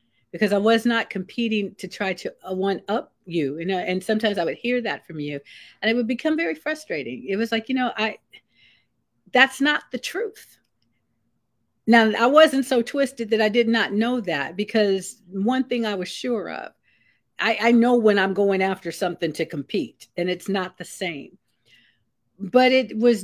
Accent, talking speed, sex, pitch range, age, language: American, 185 wpm, female, 190-235 Hz, 50-69, English